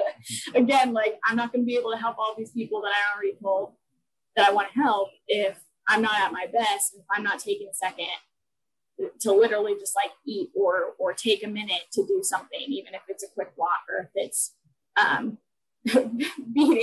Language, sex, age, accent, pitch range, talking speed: English, female, 10-29, American, 200-265 Hz, 205 wpm